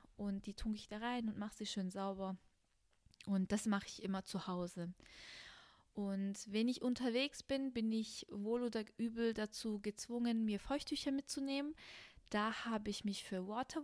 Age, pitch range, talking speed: 20-39, 185-225 Hz, 170 wpm